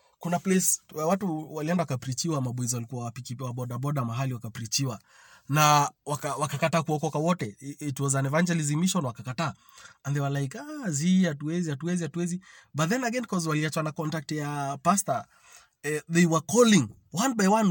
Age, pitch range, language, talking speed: 30-49, 140-175 Hz, English, 165 wpm